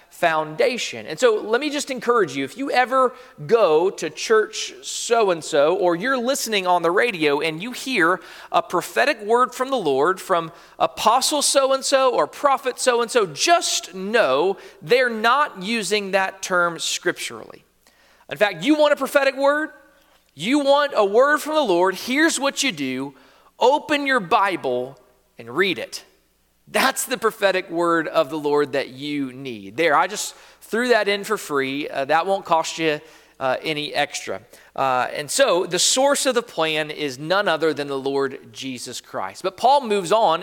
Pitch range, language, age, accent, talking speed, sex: 155-260 Hz, English, 40-59, American, 170 wpm, male